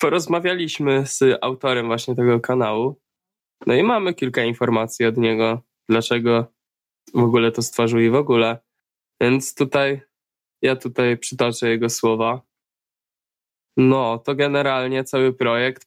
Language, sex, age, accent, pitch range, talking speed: Polish, male, 10-29, native, 120-135 Hz, 125 wpm